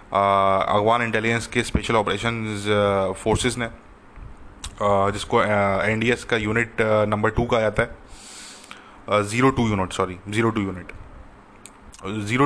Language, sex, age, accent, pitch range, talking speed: English, male, 20-39, Indian, 105-120 Hz, 75 wpm